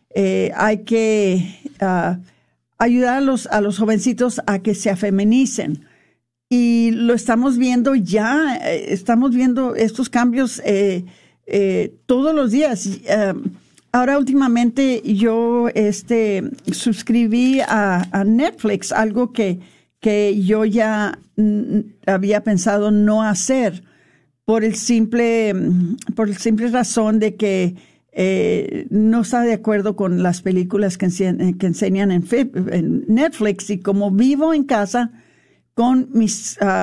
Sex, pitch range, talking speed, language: female, 195-240 Hz, 125 wpm, Spanish